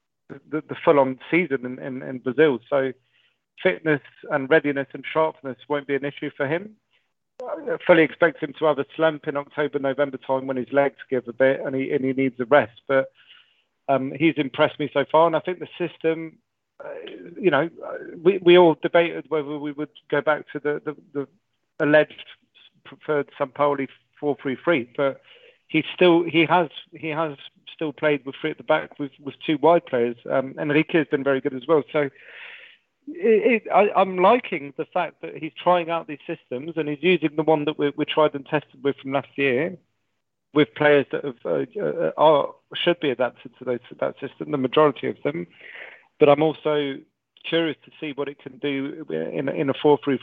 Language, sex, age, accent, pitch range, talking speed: English, male, 40-59, British, 135-160 Hz, 200 wpm